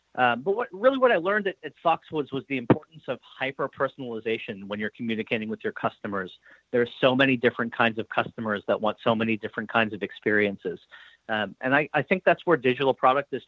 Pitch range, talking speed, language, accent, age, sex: 110-140 Hz, 210 wpm, English, American, 40-59, male